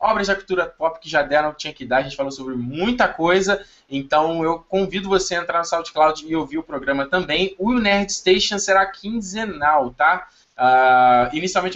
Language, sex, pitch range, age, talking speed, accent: Portuguese, male, 155-200 Hz, 20-39, 195 wpm, Brazilian